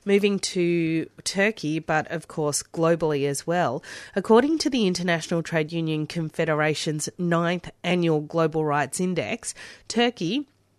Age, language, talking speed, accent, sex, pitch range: 30-49, English, 120 wpm, Australian, female, 160-200 Hz